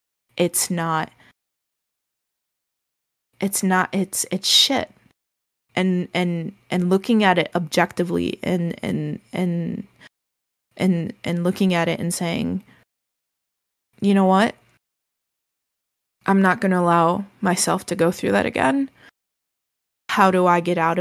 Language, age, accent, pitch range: English, 20-39, American, 170-200 Hz